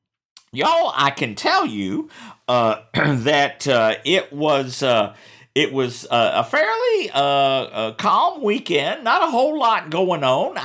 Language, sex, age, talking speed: English, male, 50-69, 145 wpm